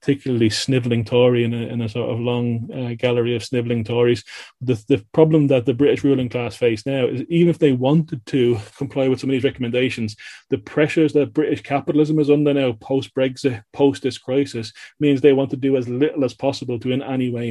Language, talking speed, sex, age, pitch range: English, 215 wpm, male, 30-49, 120-140 Hz